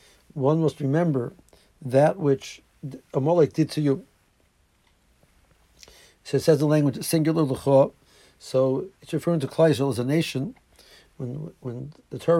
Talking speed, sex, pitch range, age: 135 wpm, male, 135-170 Hz, 60-79